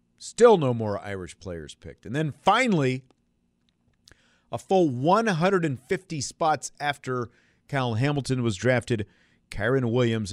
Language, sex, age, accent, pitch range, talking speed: English, male, 40-59, American, 95-140 Hz, 115 wpm